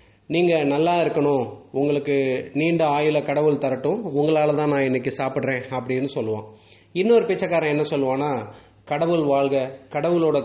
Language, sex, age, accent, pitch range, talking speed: English, male, 30-49, Indian, 125-150 Hz, 125 wpm